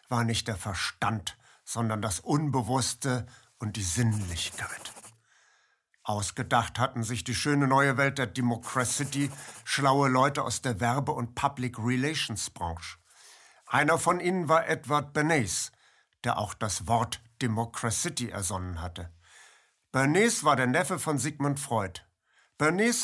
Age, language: 60-79, German